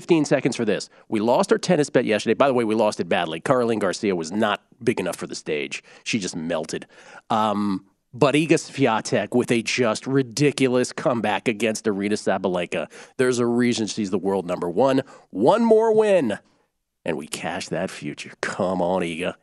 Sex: male